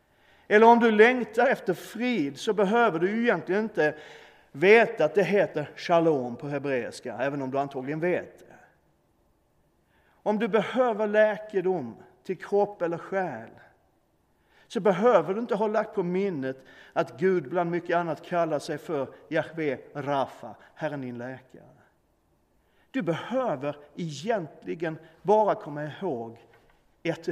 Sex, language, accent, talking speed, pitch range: male, Swedish, native, 130 wpm, 150-215 Hz